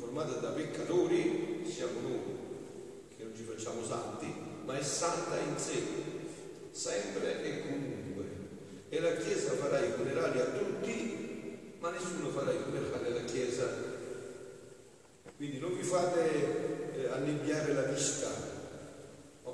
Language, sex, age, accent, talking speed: Italian, male, 40-59, native, 130 wpm